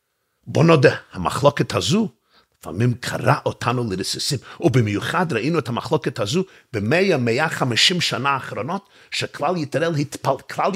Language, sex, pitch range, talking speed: Hebrew, male, 125-170 Hz, 105 wpm